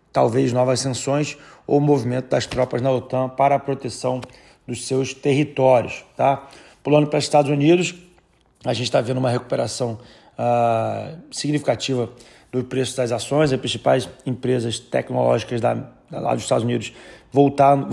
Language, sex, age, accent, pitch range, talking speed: Portuguese, male, 30-49, Brazilian, 120-140 Hz, 145 wpm